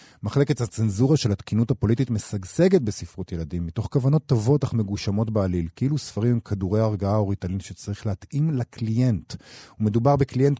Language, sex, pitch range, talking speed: Hebrew, male, 100-140 Hz, 145 wpm